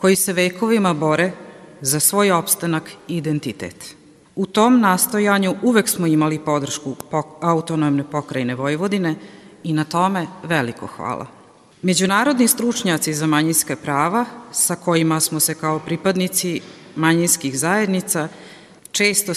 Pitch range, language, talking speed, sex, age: 160-210 Hz, Croatian, 120 wpm, female, 40-59